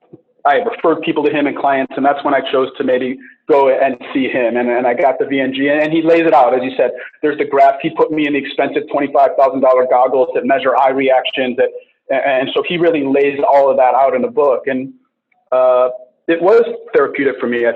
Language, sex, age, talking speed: English, male, 30-49, 230 wpm